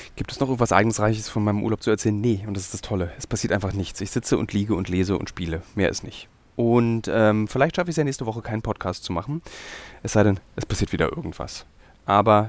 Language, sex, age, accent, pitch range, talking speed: German, male, 30-49, German, 90-110 Hz, 250 wpm